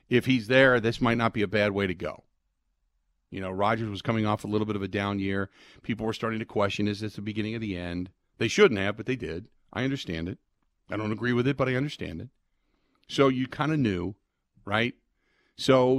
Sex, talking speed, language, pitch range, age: male, 235 wpm, English, 105-145 Hz, 50-69